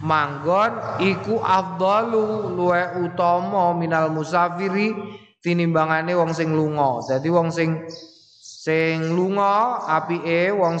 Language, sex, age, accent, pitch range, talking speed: Indonesian, male, 20-39, native, 160-195 Hz, 105 wpm